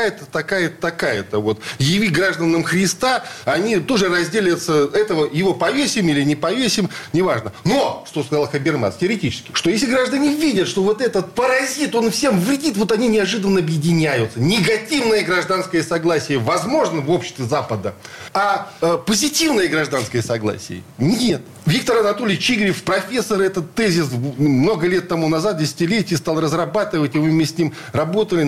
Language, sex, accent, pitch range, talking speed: Russian, male, native, 160-215 Hz, 140 wpm